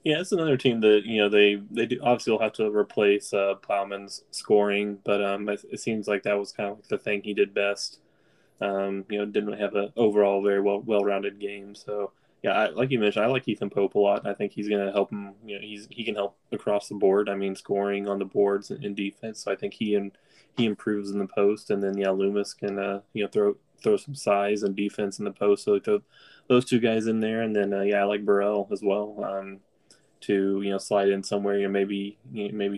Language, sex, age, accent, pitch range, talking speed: English, male, 20-39, American, 100-105 Hz, 250 wpm